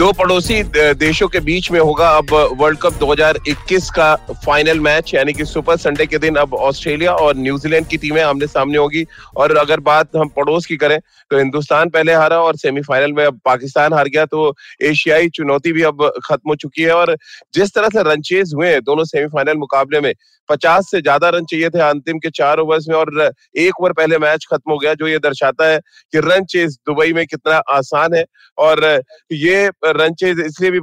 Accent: native